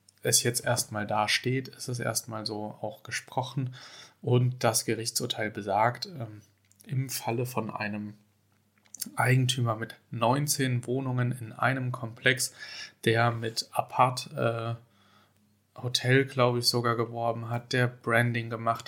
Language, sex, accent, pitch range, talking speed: German, male, German, 110-125 Hz, 125 wpm